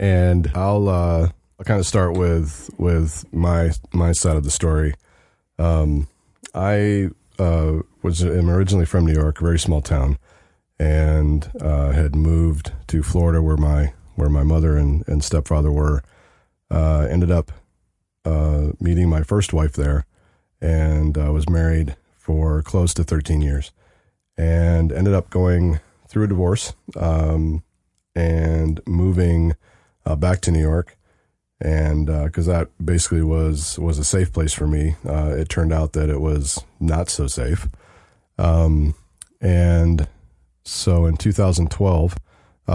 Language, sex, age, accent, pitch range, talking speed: English, male, 30-49, American, 75-90 Hz, 145 wpm